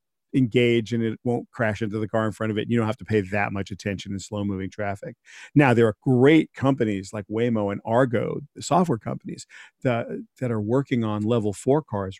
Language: English